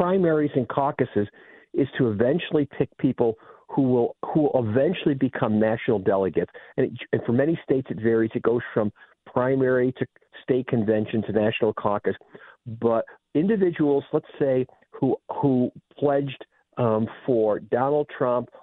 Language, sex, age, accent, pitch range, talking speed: English, male, 50-69, American, 110-130 Hz, 145 wpm